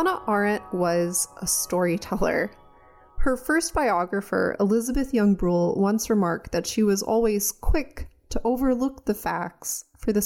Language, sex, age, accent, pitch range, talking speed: English, female, 30-49, American, 180-230 Hz, 140 wpm